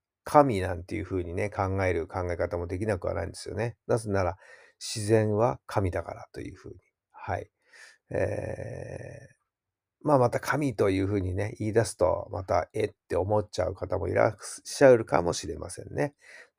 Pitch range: 95-115 Hz